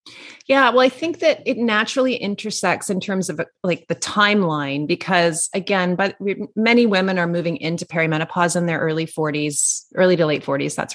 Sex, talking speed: female, 175 wpm